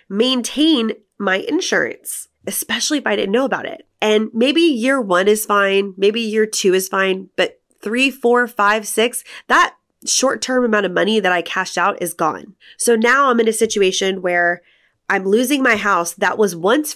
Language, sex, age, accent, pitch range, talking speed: English, female, 20-39, American, 180-230 Hz, 185 wpm